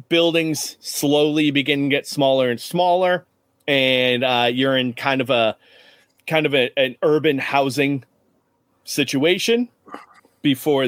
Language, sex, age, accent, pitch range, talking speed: English, male, 30-49, American, 120-145 Hz, 125 wpm